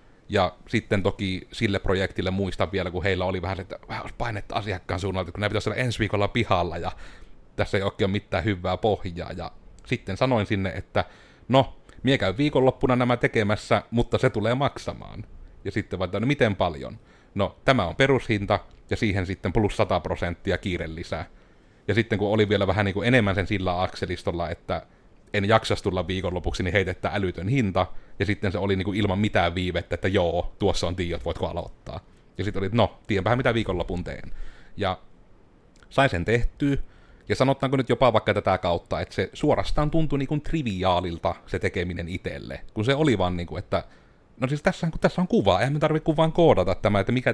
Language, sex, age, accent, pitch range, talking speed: Finnish, male, 30-49, native, 95-115 Hz, 185 wpm